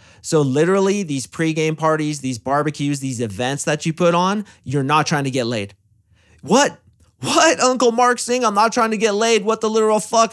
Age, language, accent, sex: 30-49, English, American, male